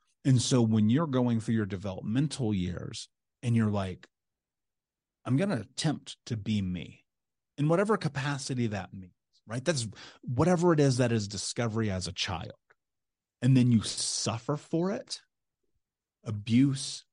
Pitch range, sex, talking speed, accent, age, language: 105-135 Hz, male, 145 wpm, American, 30-49, English